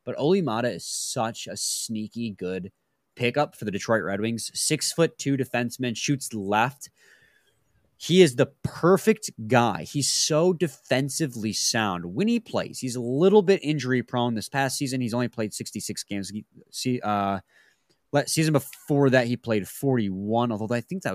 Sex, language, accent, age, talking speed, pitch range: male, English, American, 20-39, 150 wpm, 110-150 Hz